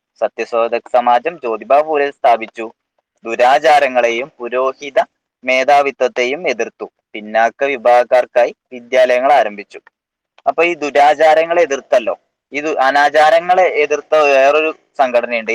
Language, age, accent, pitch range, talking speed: Malayalam, 20-39, native, 125-160 Hz, 75 wpm